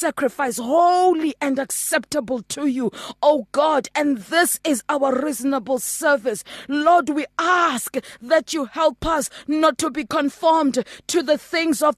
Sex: female